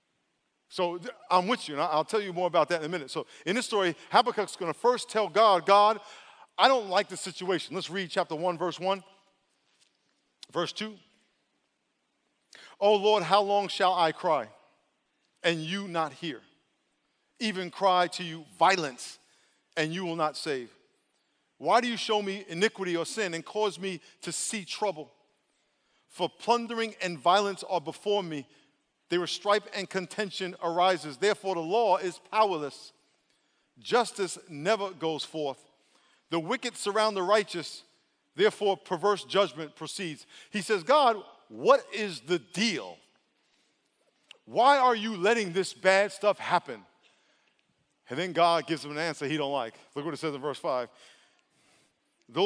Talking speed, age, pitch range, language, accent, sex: 160 wpm, 50-69, 165-210 Hz, English, American, male